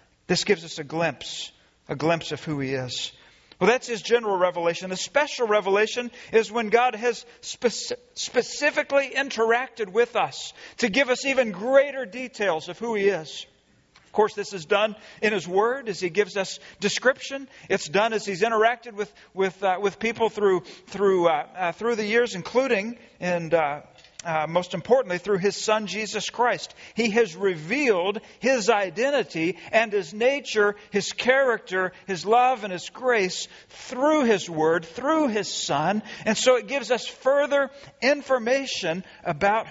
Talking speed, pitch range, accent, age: 165 wpm, 180-245 Hz, American, 40-59